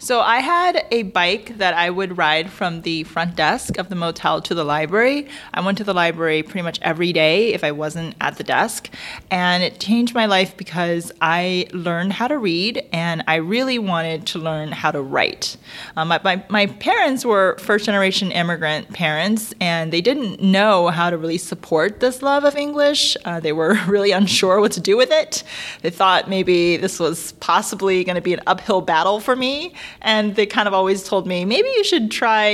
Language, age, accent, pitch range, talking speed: English, 30-49, American, 165-215 Hz, 200 wpm